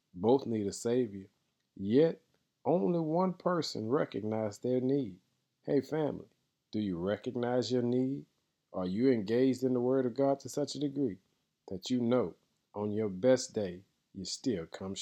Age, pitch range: 40-59, 100-135 Hz